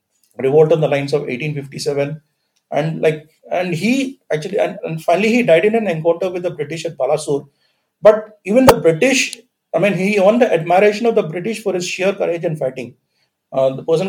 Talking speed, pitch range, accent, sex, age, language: 195 wpm, 155-195 Hz, native, male, 40-59, Telugu